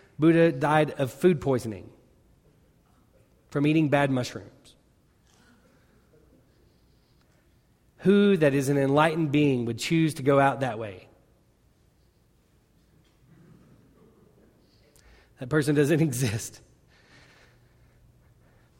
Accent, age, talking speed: American, 30-49, 85 wpm